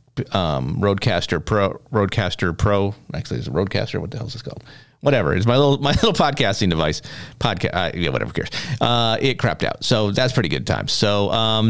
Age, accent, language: 40-59, American, English